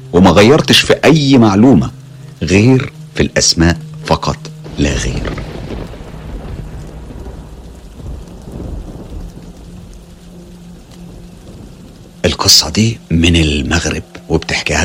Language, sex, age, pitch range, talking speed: Arabic, male, 50-69, 75-110 Hz, 65 wpm